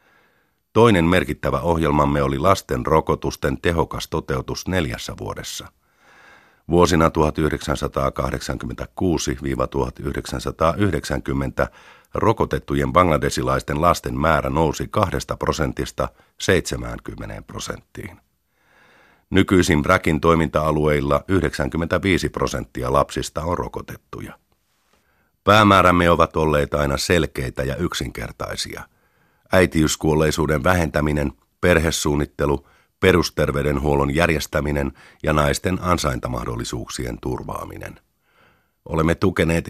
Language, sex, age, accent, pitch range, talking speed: Finnish, male, 50-69, native, 70-85 Hz, 70 wpm